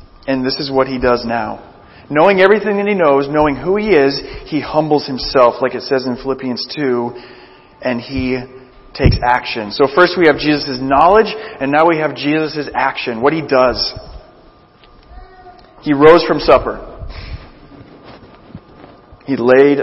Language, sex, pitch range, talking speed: English, male, 135-175 Hz, 150 wpm